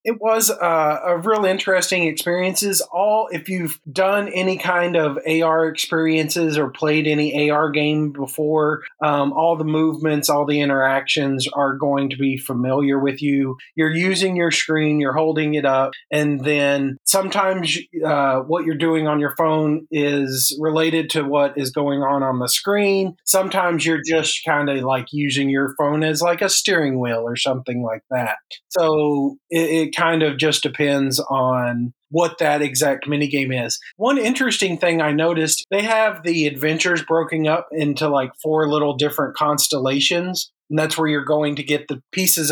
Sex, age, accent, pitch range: male, 30-49, American, 145-170 Hz